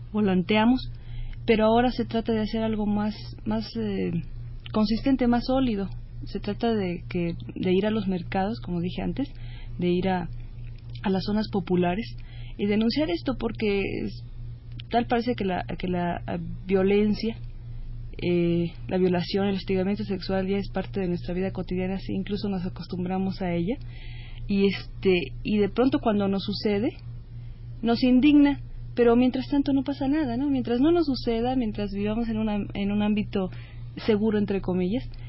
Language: Spanish